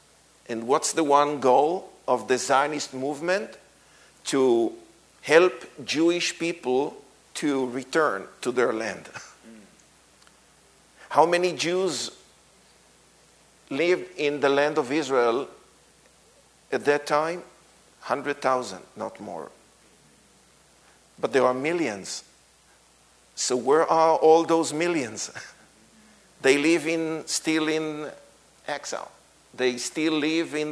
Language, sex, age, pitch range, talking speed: English, male, 50-69, 125-160 Hz, 105 wpm